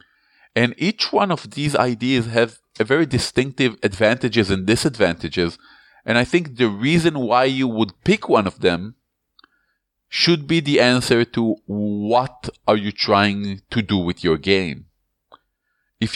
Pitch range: 105-130 Hz